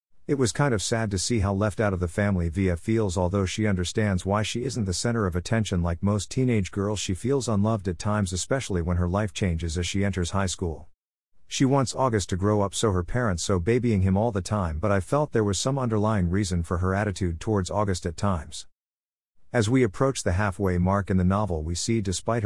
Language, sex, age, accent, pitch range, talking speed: English, male, 50-69, American, 90-110 Hz, 230 wpm